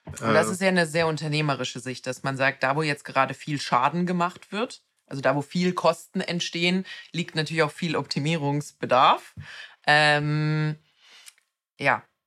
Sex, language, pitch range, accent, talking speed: female, German, 135-165 Hz, German, 150 wpm